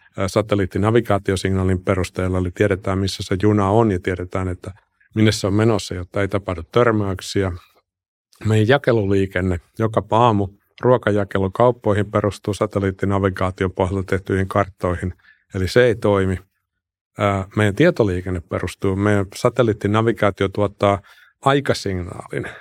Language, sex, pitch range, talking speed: Finnish, male, 95-110 Hz, 110 wpm